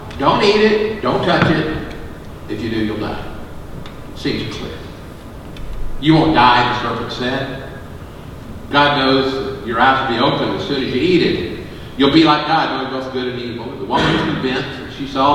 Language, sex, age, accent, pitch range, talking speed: English, male, 50-69, American, 115-145 Hz, 190 wpm